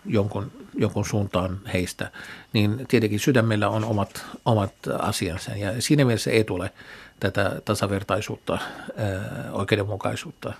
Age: 60-79